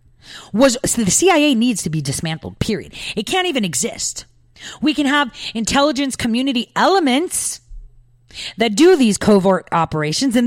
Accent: American